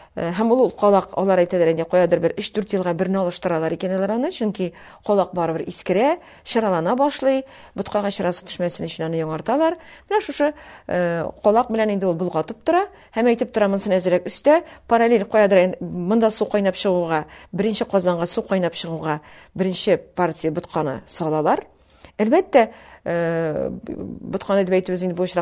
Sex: female